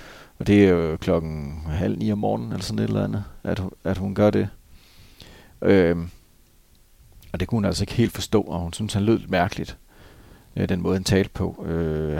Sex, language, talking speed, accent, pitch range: male, Danish, 195 wpm, native, 85-105 Hz